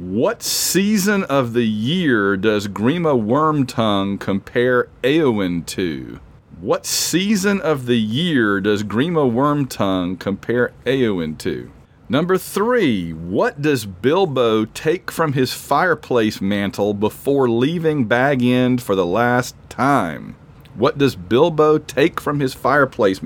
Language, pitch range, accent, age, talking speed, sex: English, 110-145 Hz, American, 40-59, 120 wpm, male